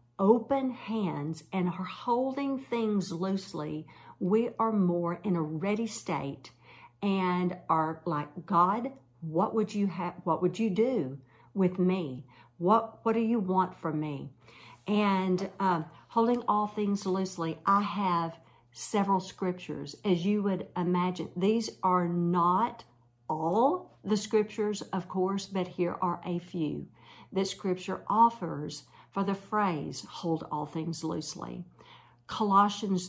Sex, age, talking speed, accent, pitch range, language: female, 50-69, 130 wpm, American, 155-200 Hz, English